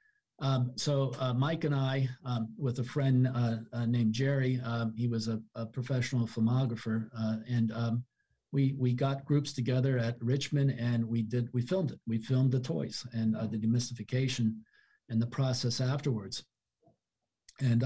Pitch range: 115-135 Hz